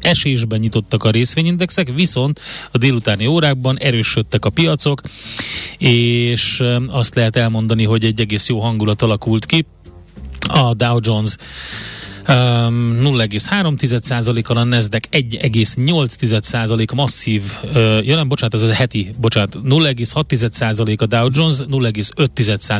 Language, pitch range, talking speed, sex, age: Hungarian, 110-135 Hz, 110 wpm, male, 30-49